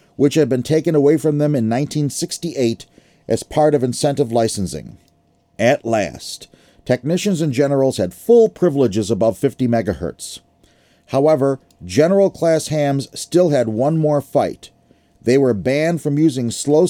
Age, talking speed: 40-59, 140 wpm